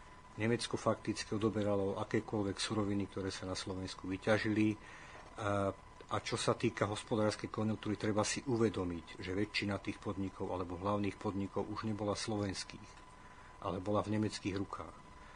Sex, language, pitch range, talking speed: male, Slovak, 100-110 Hz, 135 wpm